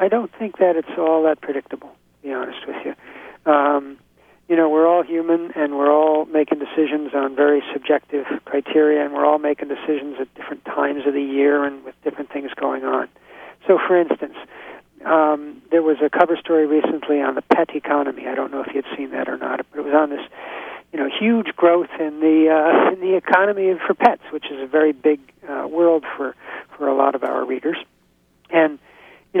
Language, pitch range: English, 145-175 Hz